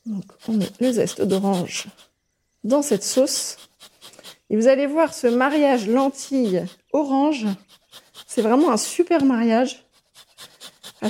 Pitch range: 215-280 Hz